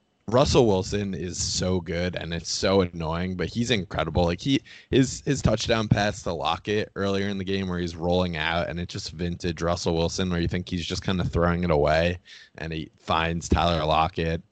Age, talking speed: 20-39, 205 wpm